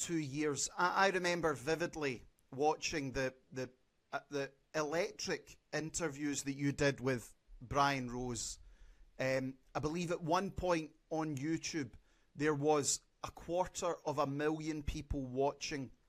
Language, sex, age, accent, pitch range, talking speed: English, male, 30-49, British, 135-165 Hz, 130 wpm